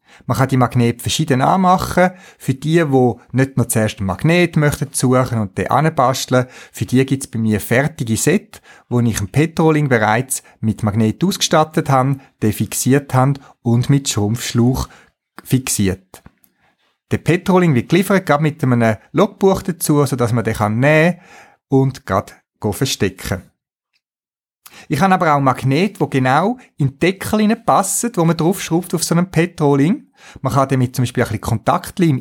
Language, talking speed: German, 160 wpm